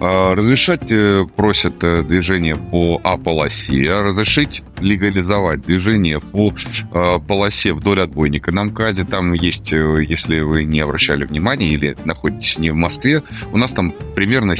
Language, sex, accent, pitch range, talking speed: Russian, male, native, 80-105 Hz, 130 wpm